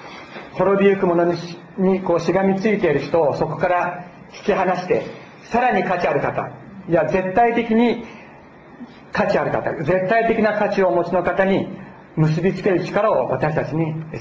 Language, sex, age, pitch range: Japanese, male, 40-59, 160-190 Hz